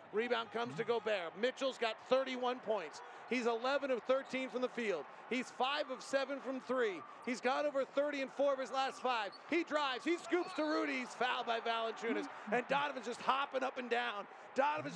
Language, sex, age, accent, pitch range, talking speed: English, male, 40-59, American, 210-260 Hz, 195 wpm